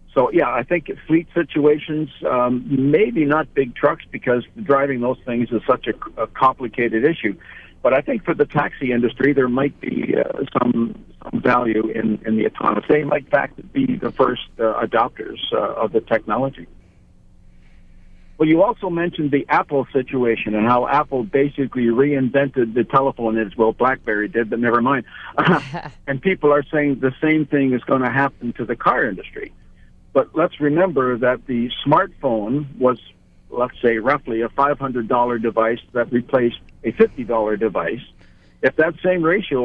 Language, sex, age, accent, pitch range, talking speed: English, male, 60-79, American, 115-145 Hz, 165 wpm